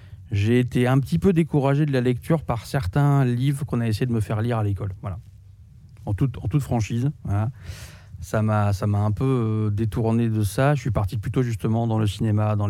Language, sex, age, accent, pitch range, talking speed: French, male, 20-39, French, 105-120 Hz, 215 wpm